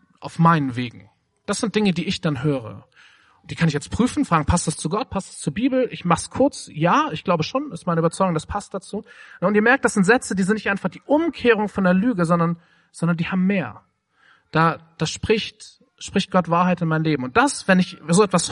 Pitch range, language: 150-205 Hz, German